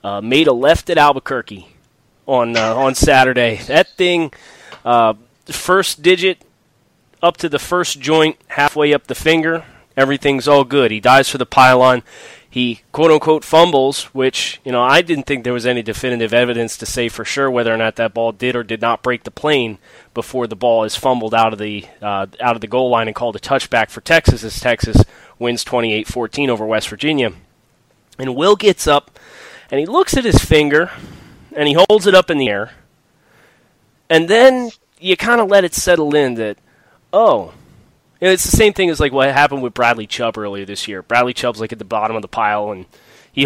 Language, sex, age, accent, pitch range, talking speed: English, male, 20-39, American, 115-150 Hz, 210 wpm